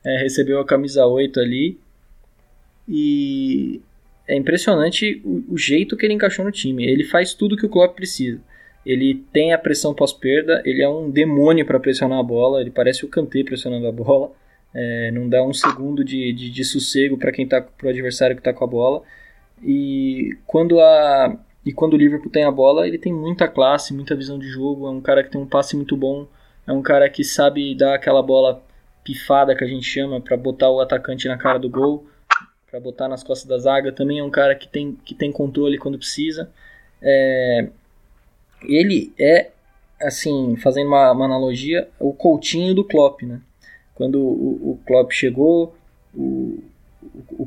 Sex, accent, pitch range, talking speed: male, Brazilian, 130-155 Hz, 185 wpm